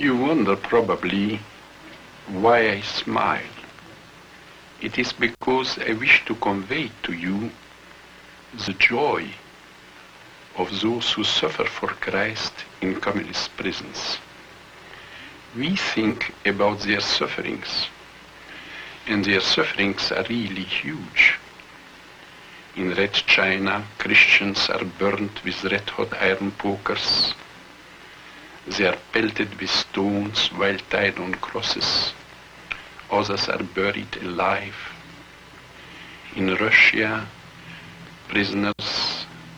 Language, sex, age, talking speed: English, male, 60-79, 95 wpm